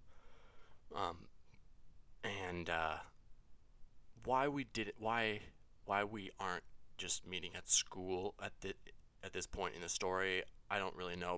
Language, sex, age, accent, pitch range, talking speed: English, male, 20-39, American, 90-120 Hz, 140 wpm